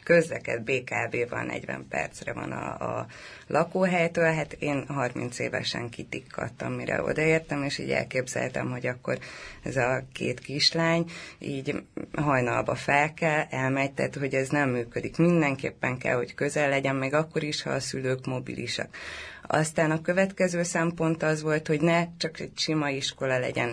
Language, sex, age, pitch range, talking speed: Hungarian, female, 30-49, 130-170 Hz, 150 wpm